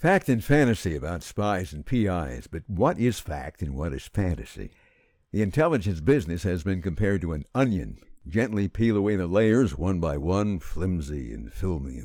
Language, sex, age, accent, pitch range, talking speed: English, male, 60-79, American, 80-110 Hz, 175 wpm